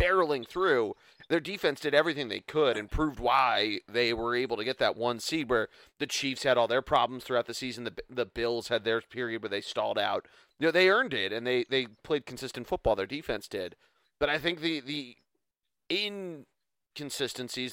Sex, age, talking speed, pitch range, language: male, 30-49, 200 wpm, 120-155 Hz, English